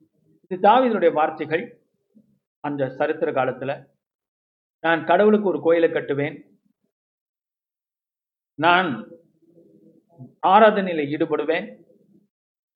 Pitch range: 145-195 Hz